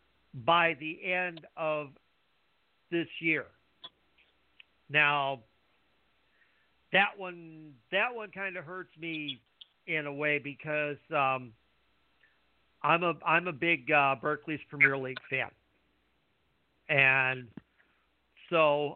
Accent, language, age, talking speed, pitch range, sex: American, English, 50-69, 100 wpm, 135-165 Hz, male